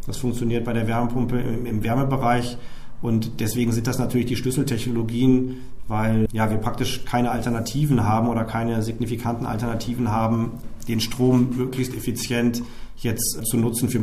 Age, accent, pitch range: 40-59, German, 120-140 Hz